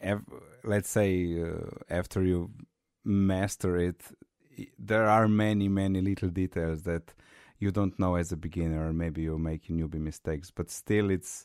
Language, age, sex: English, 30-49, male